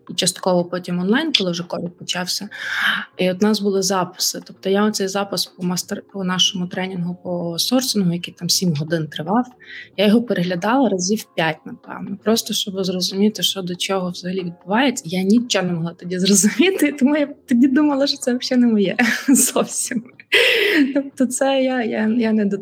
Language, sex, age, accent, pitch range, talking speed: Ukrainian, female, 20-39, native, 185-240 Hz, 170 wpm